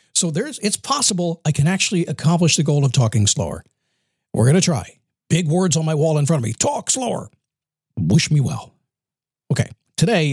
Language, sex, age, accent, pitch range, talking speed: English, male, 50-69, American, 130-185 Hz, 190 wpm